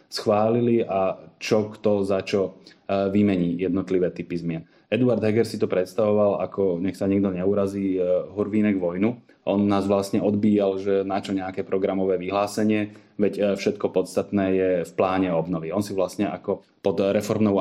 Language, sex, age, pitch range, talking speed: Slovak, male, 20-39, 95-115 Hz, 150 wpm